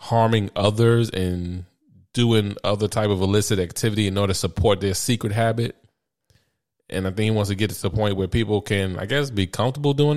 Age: 20-39